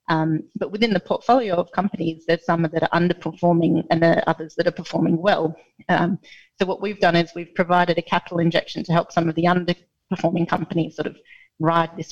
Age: 30-49